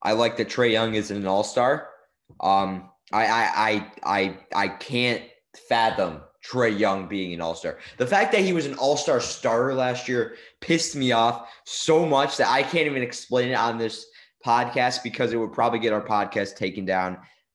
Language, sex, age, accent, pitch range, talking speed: English, male, 20-39, American, 100-125 Hz, 170 wpm